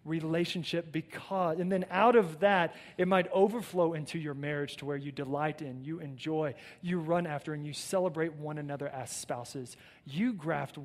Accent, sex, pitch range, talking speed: American, male, 140-180 Hz, 175 wpm